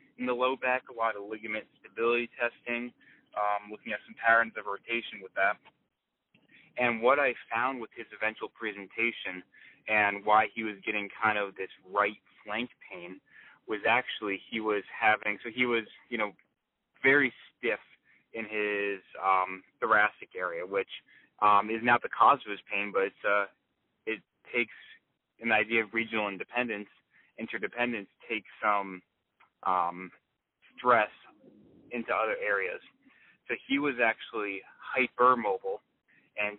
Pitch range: 105-120 Hz